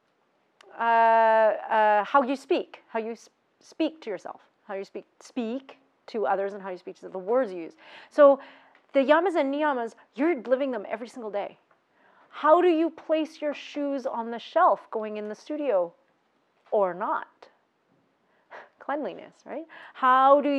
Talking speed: 165 wpm